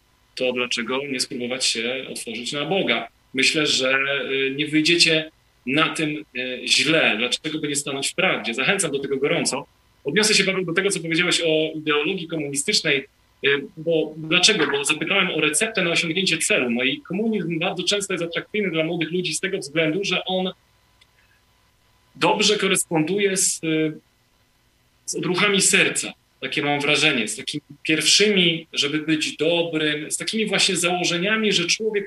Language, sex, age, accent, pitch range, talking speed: Polish, male, 40-59, native, 140-185 Hz, 150 wpm